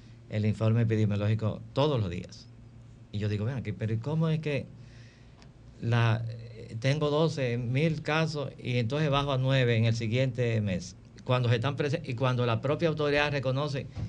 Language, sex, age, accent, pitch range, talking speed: Spanish, male, 50-69, American, 115-130 Hz, 160 wpm